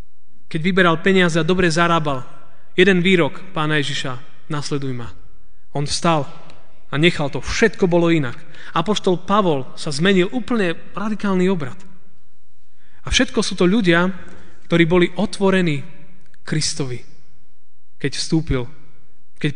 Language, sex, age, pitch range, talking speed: Slovak, male, 30-49, 130-175 Hz, 120 wpm